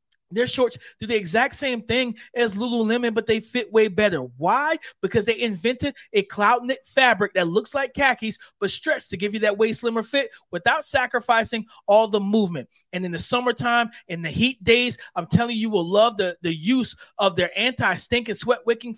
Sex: male